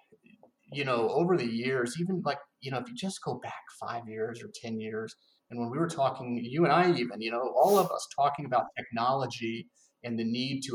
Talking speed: 225 wpm